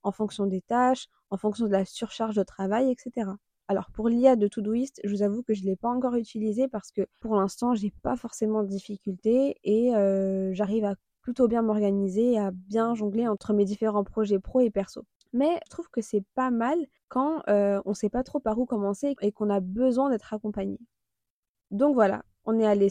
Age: 20-39